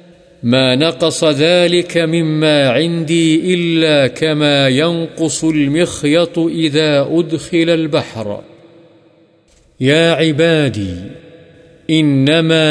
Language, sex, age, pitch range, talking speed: Urdu, male, 50-69, 135-165 Hz, 70 wpm